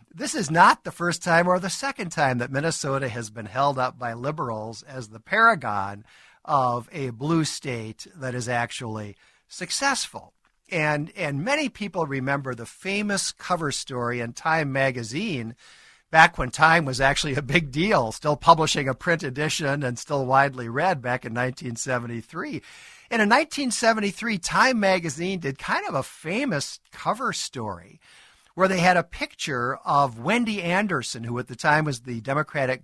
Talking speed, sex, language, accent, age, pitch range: 160 wpm, male, English, American, 50-69, 125-170 Hz